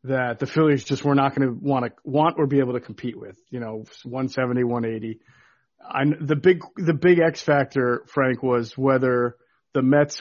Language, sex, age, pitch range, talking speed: English, male, 40-59, 125-155 Hz, 195 wpm